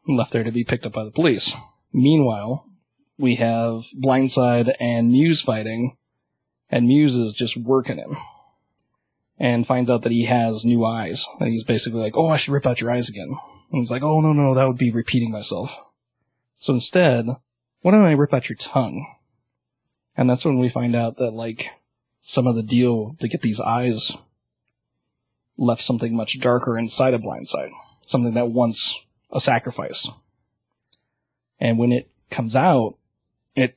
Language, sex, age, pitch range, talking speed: English, male, 30-49, 115-130 Hz, 170 wpm